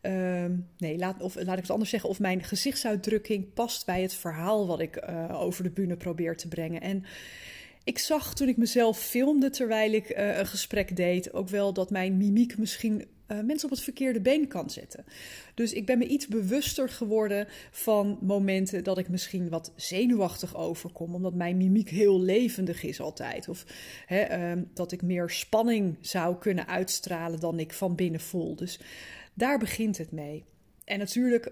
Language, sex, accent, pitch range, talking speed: Dutch, female, Dutch, 180-215 Hz, 185 wpm